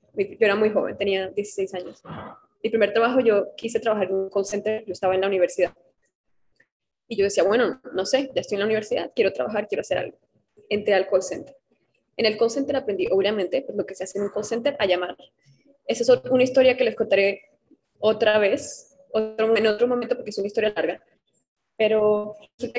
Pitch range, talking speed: 200-235 Hz, 210 wpm